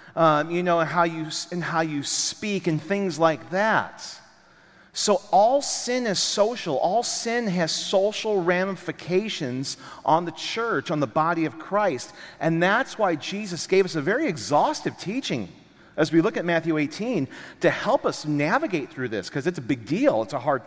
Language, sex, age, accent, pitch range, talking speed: English, male, 40-59, American, 150-200 Hz, 175 wpm